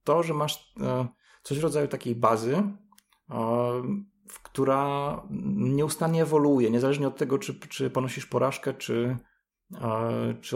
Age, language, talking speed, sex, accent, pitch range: 30-49, Polish, 115 wpm, male, native, 110-130 Hz